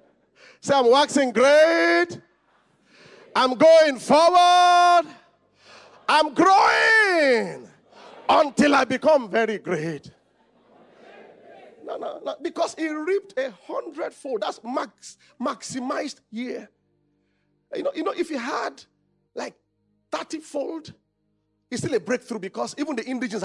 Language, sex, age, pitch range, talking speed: English, male, 40-59, 200-320 Hz, 115 wpm